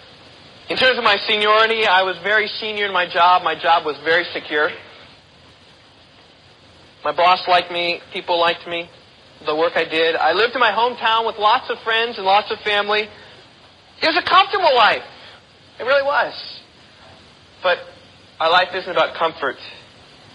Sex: male